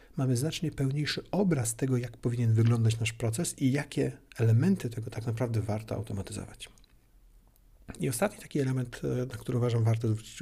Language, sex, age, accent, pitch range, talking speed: Polish, male, 50-69, native, 115-145 Hz, 155 wpm